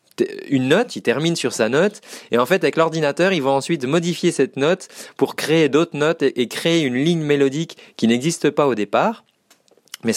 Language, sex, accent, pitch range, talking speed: French, male, French, 115-160 Hz, 195 wpm